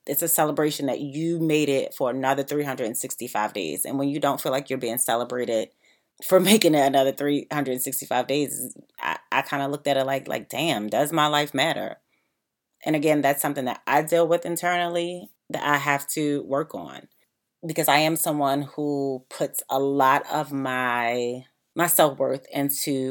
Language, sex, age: English, female, 30-49